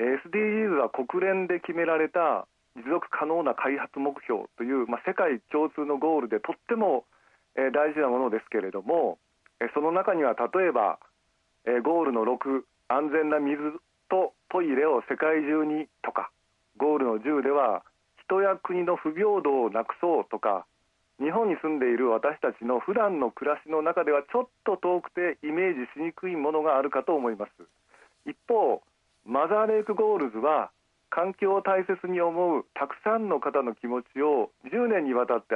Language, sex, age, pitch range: Japanese, male, 40-59, 130-180 Hz